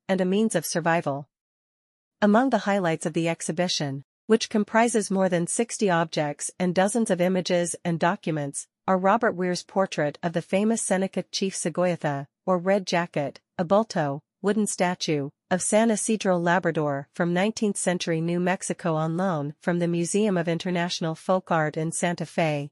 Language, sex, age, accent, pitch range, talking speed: English, female, 40-59, American, 165-195 Hz, 160 wpm